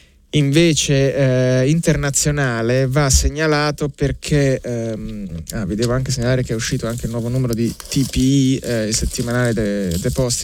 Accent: native